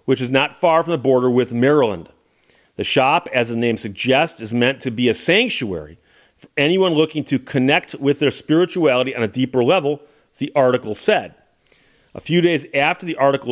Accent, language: American, English